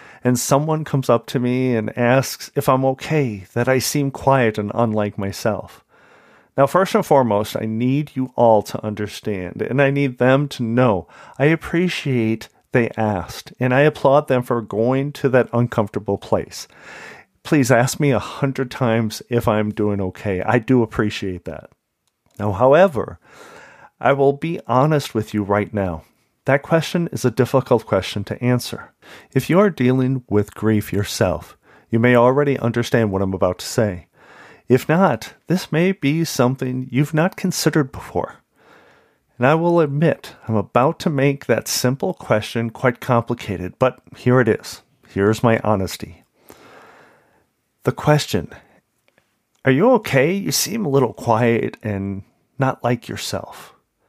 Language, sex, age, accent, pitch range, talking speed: English, male, 40-59, American, 110-140 Hz, 155 wpm